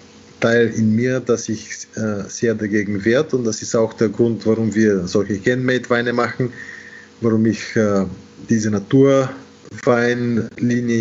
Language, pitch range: German, 110-125 Hz